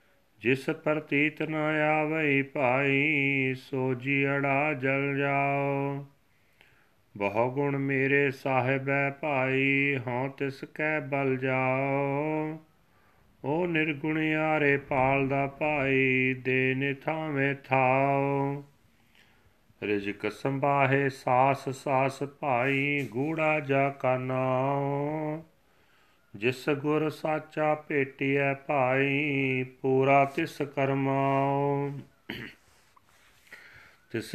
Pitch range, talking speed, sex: 135-145 Hz, 80 wpm, male